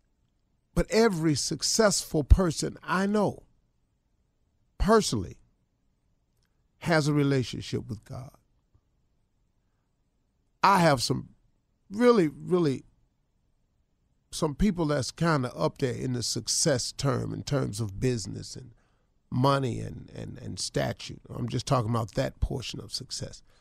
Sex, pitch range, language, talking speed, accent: male, 115-145 Hz, English, 115 wpm, American